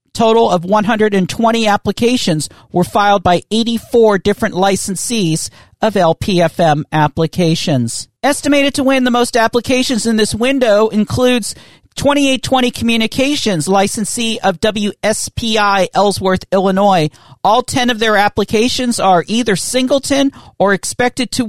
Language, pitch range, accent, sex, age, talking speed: English, 175-225 Hz, American, male, 50-69, 115 wpm